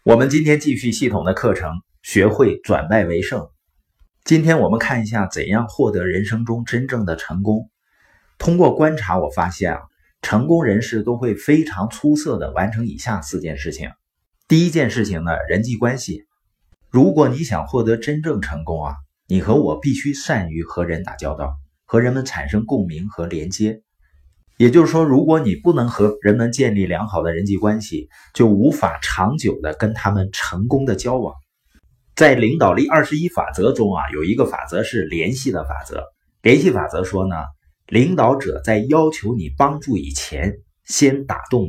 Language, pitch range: Chinese, 85-130 Hz